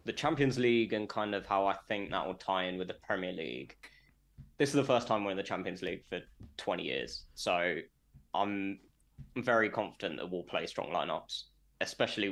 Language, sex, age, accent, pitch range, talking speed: English, male, 10-29, British, 95-115 Hz, 195 wpm